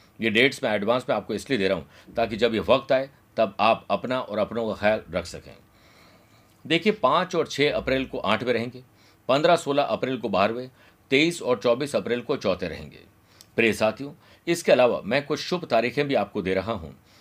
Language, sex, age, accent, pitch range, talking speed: Hindi, male, 50-69, native, 110-140 Hz, 200 wpm